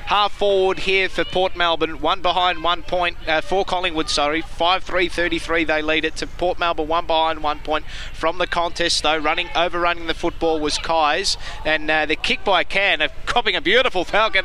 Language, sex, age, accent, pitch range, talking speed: English, male, 20-39, Australian, 165-185 Hz, 185 wpm